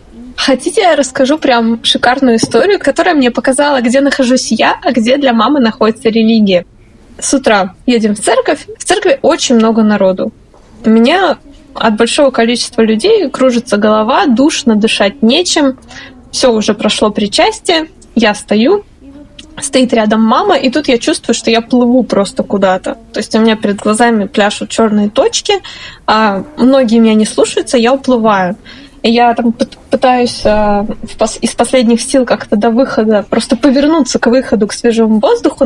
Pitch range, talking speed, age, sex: 225-285 Hz, 150 wpm, 20-39, female